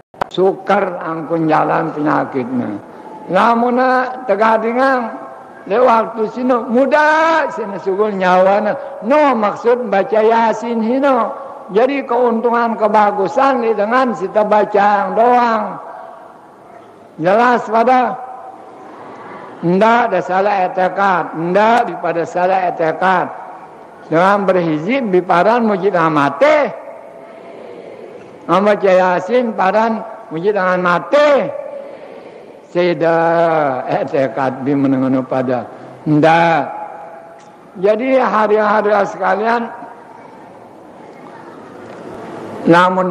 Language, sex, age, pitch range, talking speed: Indonesian, male, 60-79, 165-235 Hz, 80 wpm